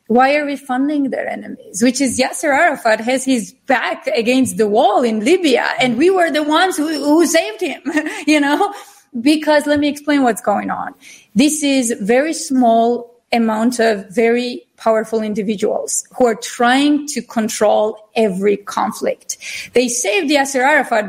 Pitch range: 235-290 Hz